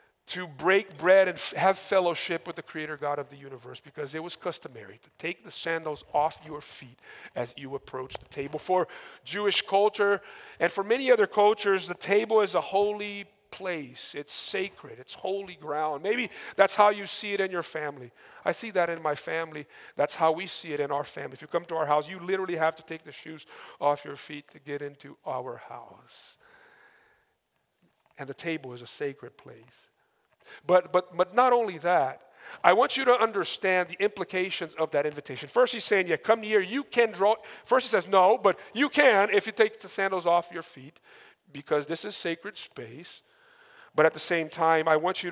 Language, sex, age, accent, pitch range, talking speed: English, male, 40-59, American, 150-200 Hz, 200 wpm